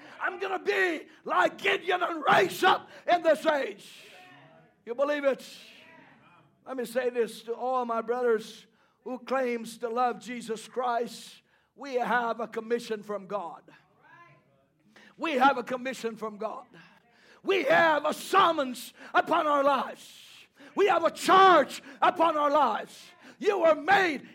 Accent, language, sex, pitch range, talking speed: American, English, male, 245-315 Hz, 145 wpm